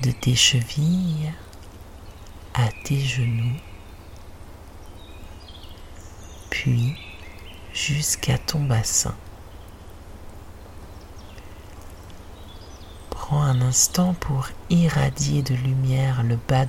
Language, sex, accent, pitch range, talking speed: French, male, French, 90-130 Hz, 70 wpm